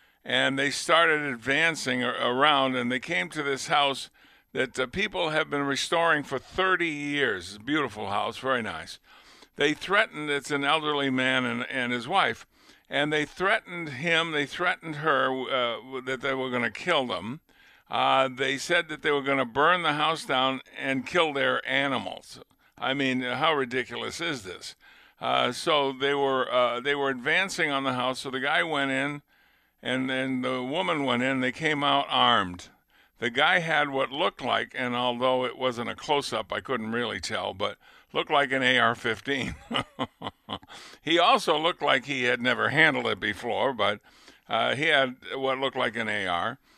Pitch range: 125-150 Hz